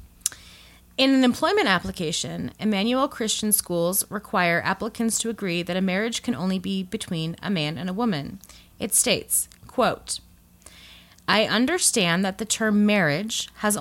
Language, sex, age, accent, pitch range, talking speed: English, female, 30-49, American, 185-245 Hz, 145 wpm